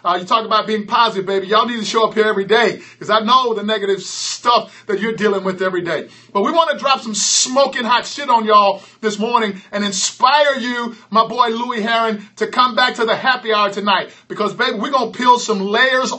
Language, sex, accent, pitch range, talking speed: English, male, American, 210-250 Hz, 235 wpm